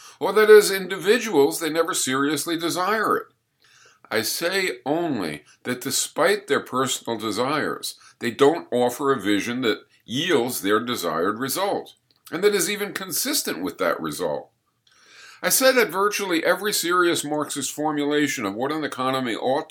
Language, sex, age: English, male, 50-69